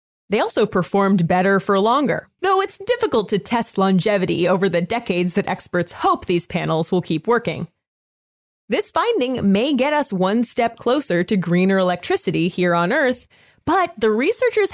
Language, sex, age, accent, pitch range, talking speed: English, female, 20-39, American, 185-280 Hz, 165 wpm